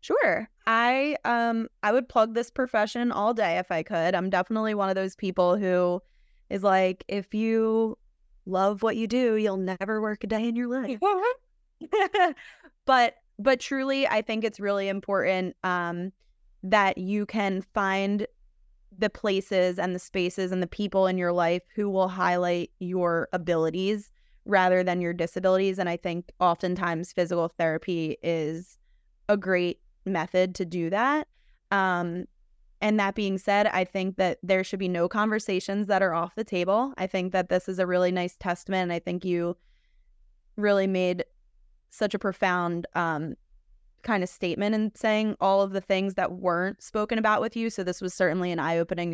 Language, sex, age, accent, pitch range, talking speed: English, female, 20-39, American, 175-210 Hz, 170 wpm